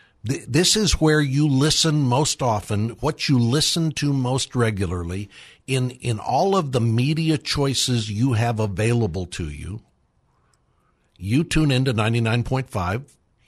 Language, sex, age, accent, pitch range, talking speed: English, male, 60-79, American, 110-135 Hz, 135 wpm